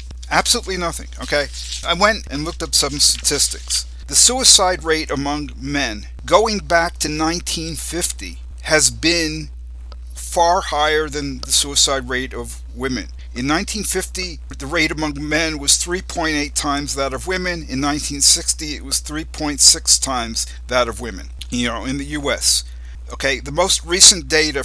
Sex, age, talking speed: male, 50-69, 145 wpm